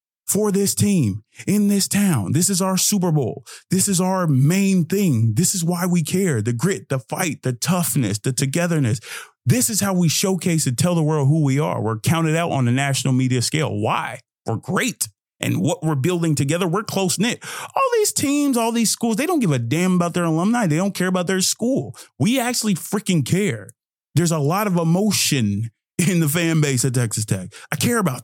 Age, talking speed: 30-49, 210 wpm